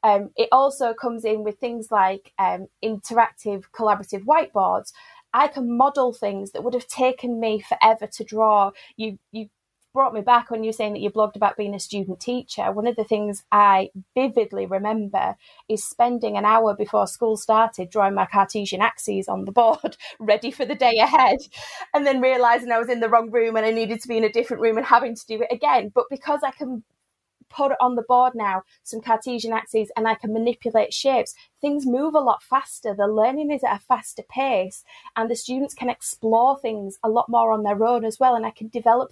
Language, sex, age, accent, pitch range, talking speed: English, female, 20-39, British, 215-260 Hz, 210 wpm